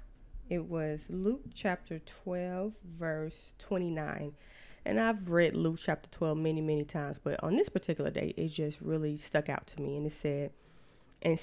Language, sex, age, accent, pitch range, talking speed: English, female, 20-39, American, 150-175 Hz, 170 wpm